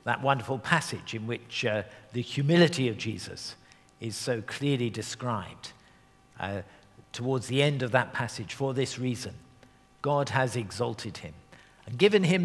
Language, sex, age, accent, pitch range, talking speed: English, male, 50-69, British, 115-160 Hz, 150 wpm